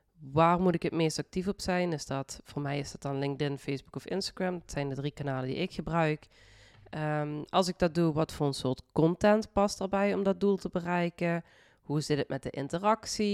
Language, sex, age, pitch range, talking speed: Dutch, female, 20-39, 140-180 Hz, 225 wpm